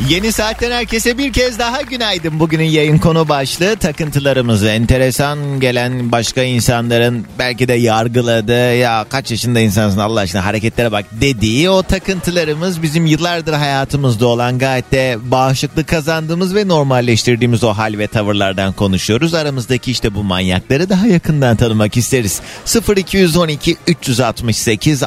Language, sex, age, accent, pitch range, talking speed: Turkish, male, 30-49, native, 110-150 Hz, 130 wpm